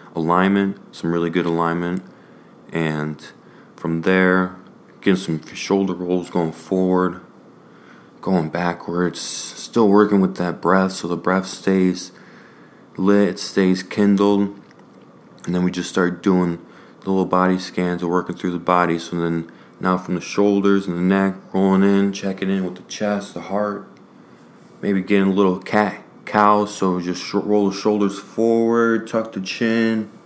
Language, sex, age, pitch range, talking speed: English, male, 20-39, 90-105 Hz, 155 wpm